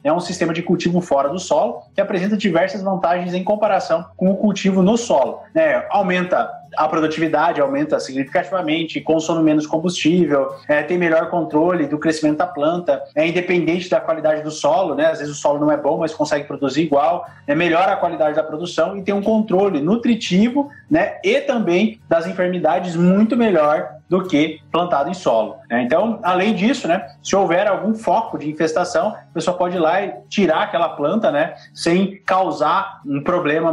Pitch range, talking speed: 150-200 Hz, 180 wpm